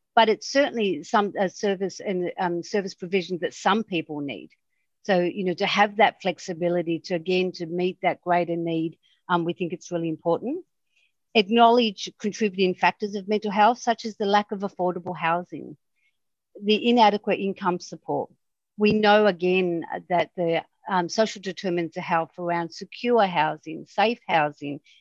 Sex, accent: female, Australian